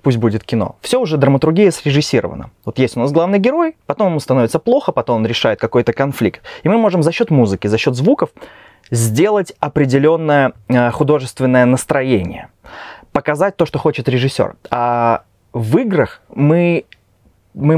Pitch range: 115-155 Hz